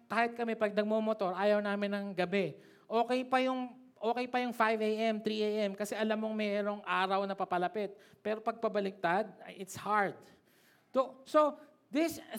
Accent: native